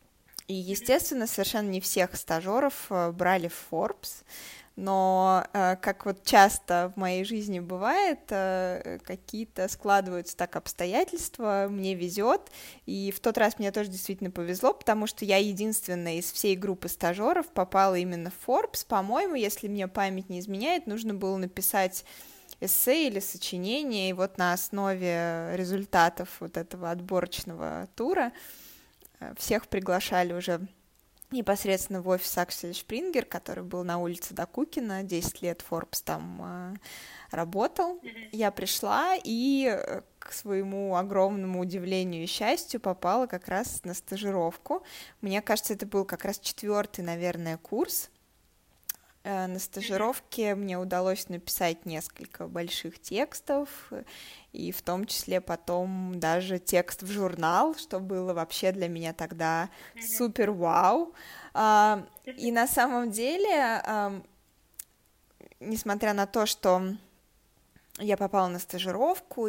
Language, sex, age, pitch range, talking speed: Russian, female, 20-39, 180-215 Hz, 120 wpm